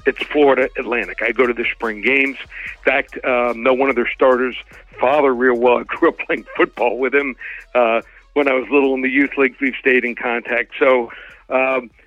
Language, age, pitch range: English, 60-79, 130-160 Hz